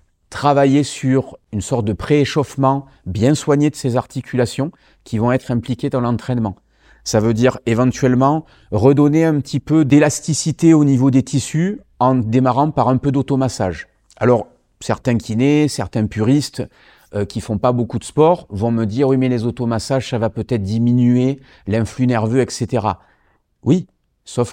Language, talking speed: French, 160 wpm